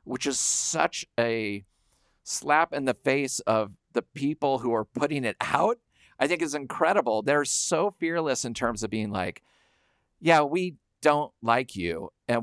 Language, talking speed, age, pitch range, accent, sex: English, 165 wpm, 40-59, 105-135 Hz, American, male